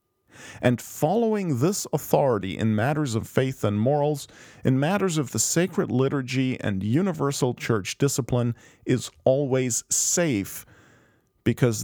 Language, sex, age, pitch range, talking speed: English, male, 40-59, 115-150 Hz, 120 wpm